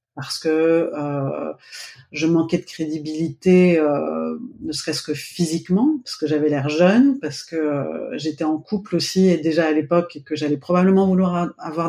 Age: 30-49